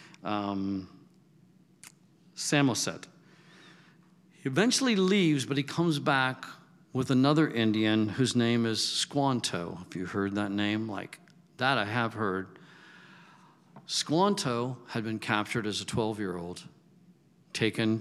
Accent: American